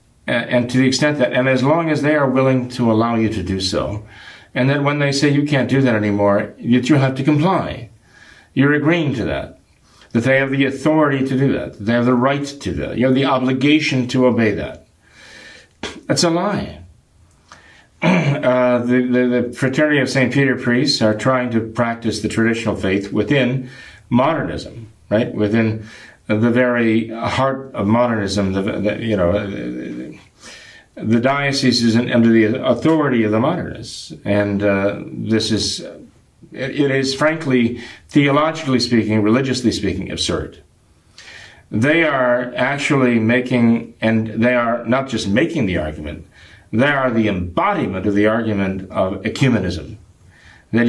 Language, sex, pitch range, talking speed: English, male, 105-130 Hz, 155 wpm